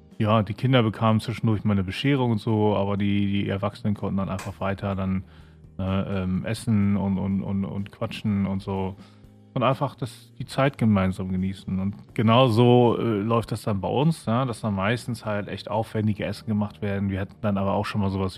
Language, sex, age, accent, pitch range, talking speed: German, male, 30-49, German, 100-115 Hz, 205 wpm